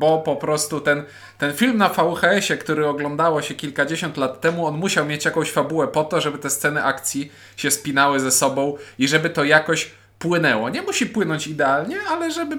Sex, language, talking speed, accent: male, Polish, 190 wpm, native